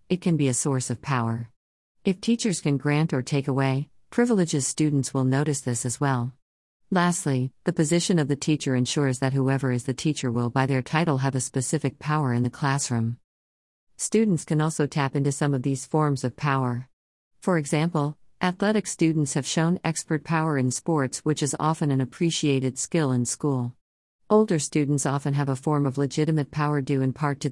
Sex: female